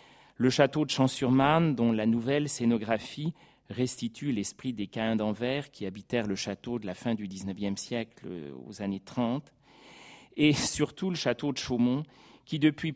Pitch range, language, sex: 110-145 Hz, French, male